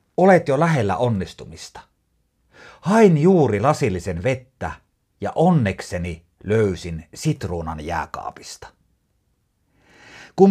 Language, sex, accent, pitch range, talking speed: Finnish, male, native, 100-155 Hz, 80 wpm